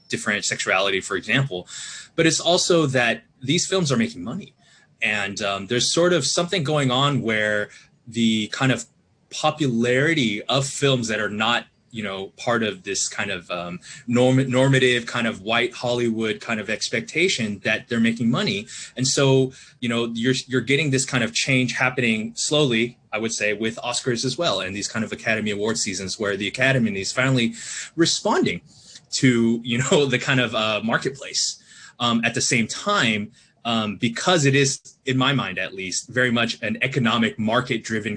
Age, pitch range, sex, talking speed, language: 20-39, 110-135 Hz, male, 175 wpm, English